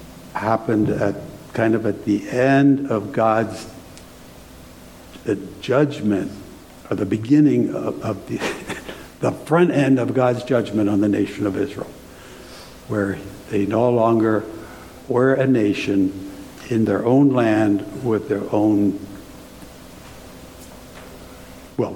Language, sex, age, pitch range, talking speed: English, male, 60-79, 100-130 Hz, 115 wpm